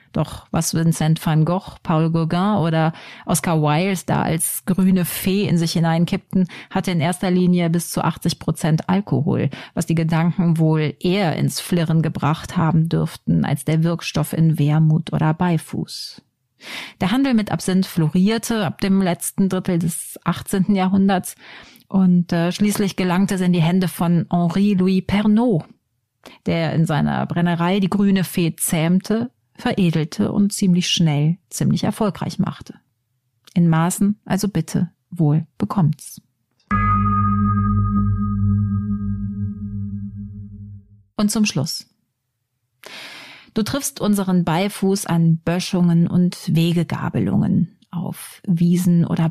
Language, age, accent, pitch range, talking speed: German, 30-49, German, 155-190 Hz, 125 wpm